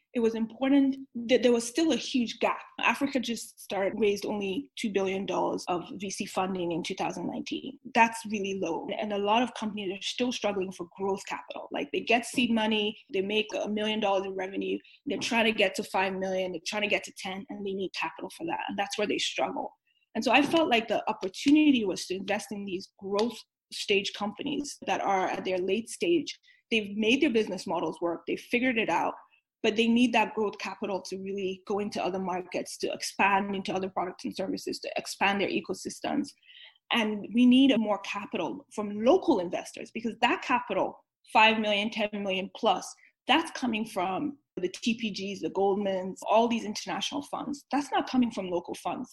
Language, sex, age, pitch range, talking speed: English, female, 20-39, 195-245 Hz, 195 wpm